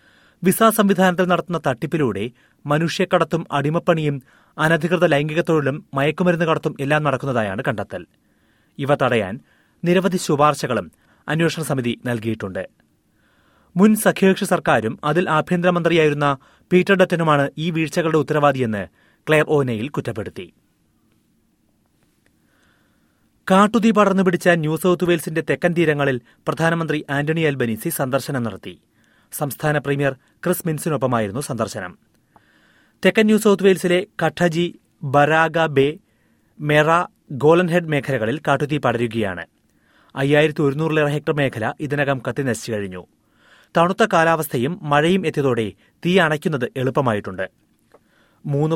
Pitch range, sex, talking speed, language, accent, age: 135-170 Hz, male, 90 wpm, Malayalam, native, 30-49